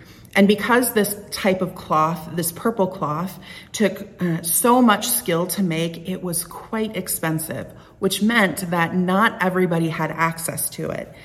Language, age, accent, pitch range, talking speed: English, 30-49, American, 155-190 Hz, 155 wpm